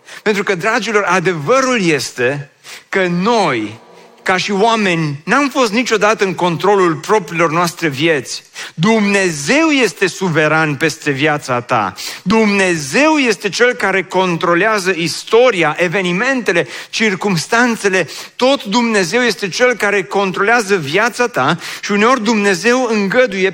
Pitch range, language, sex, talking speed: 180-235 Hz, Romanian, male, 110 wpm